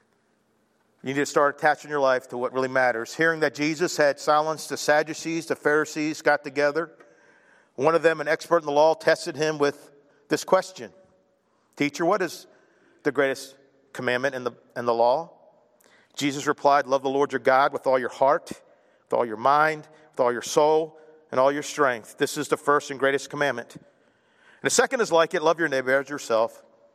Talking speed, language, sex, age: 190 wpm, English, male, 50-69